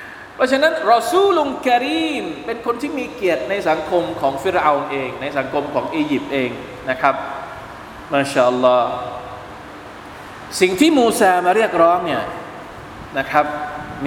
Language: Thai